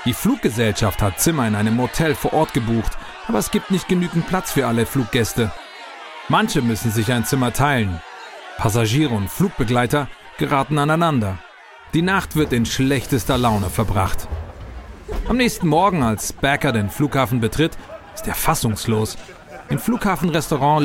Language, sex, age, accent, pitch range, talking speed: German, male, 40-59, German, 115-170 Hz, 145 wpm